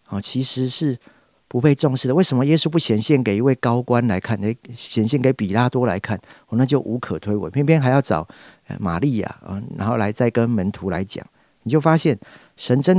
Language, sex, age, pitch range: Chinese, male, 50-69, 100-135 Hz